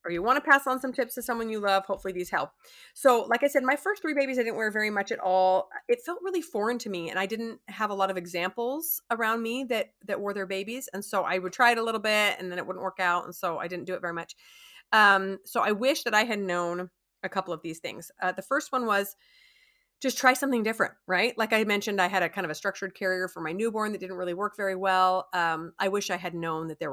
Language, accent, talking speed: English, American, 275 wpm